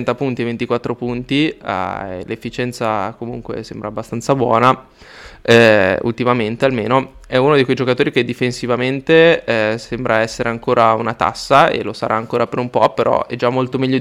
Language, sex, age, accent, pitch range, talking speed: Italian, male, 20-39, native, 115-130 Hz, 165 wpm